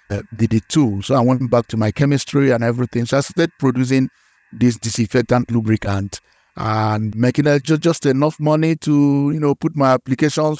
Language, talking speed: English, 175 wpm